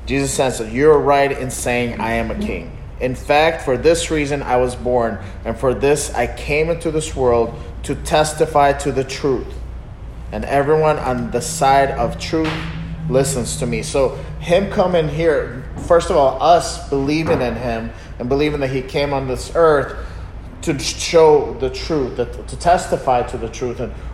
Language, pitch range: English, 115-145 Hz